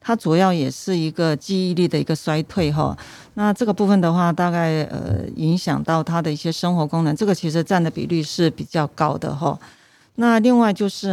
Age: 40-59